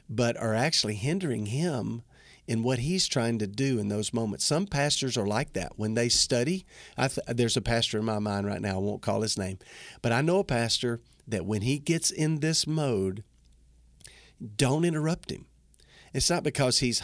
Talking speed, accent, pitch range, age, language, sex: 190 wpm, American, 115-150 Hz, 50-69, English, male